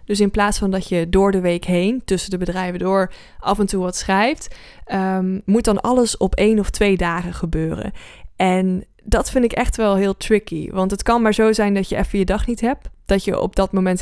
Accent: Dutch